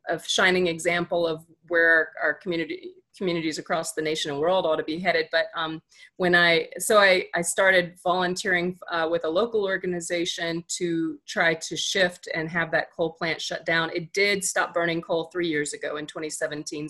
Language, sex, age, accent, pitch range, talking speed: English, female, 30-49, American, 155-180 Hz, 185 wpm